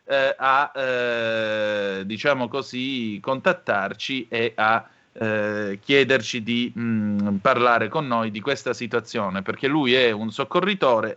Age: 30-49